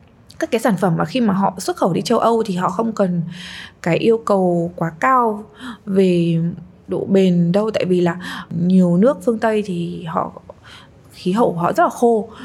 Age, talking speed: 20-39, 200 wpm